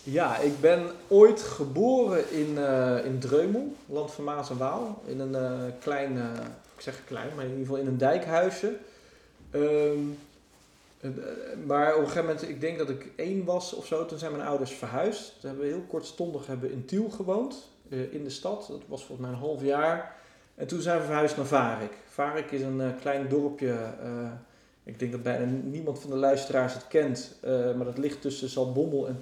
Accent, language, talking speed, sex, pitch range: Dutch, Dutch, 205 wpm, male, 125-150 Hz